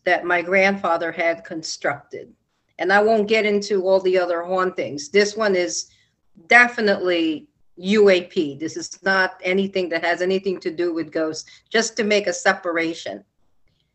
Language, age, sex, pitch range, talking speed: English, 50-69, female, 180-230 Hz, 150 wpm